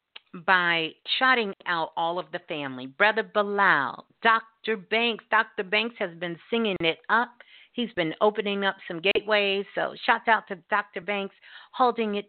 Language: English